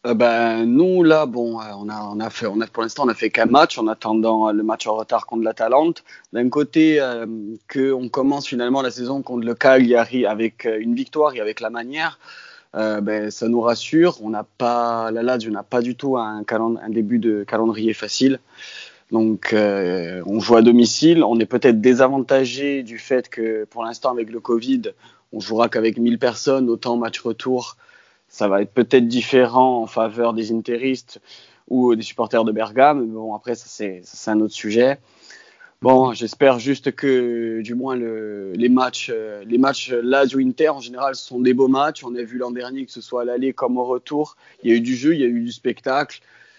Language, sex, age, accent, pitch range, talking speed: French, male, 30-49, French, 110-130 Hz, 205 wpm